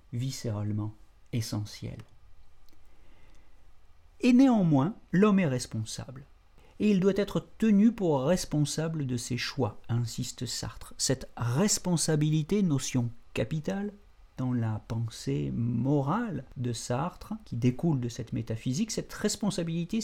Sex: male